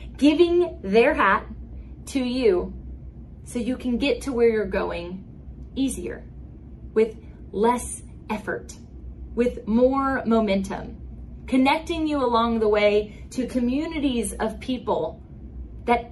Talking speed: 110 wpm